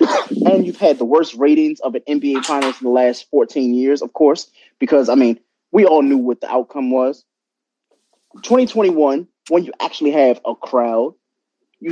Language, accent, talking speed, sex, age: English, American, 175 wpm, male, 20-39